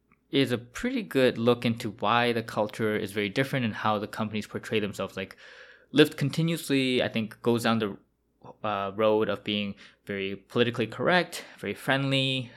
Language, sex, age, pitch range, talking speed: English, male, 20-39, 100-120 Hz, 165 wpm